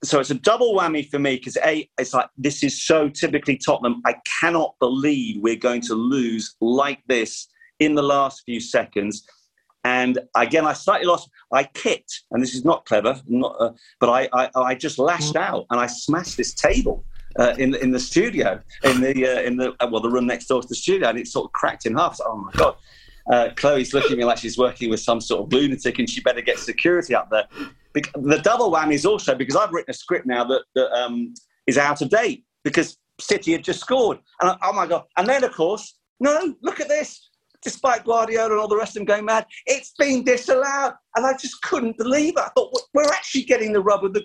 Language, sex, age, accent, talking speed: English, male, 40-59, British, 235 wpm